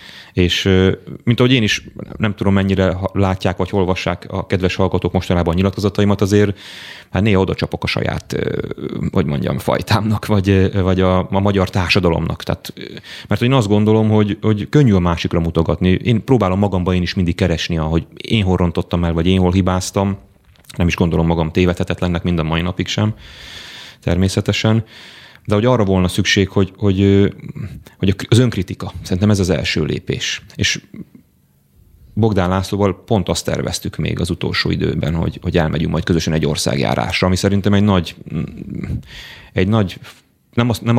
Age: 30-49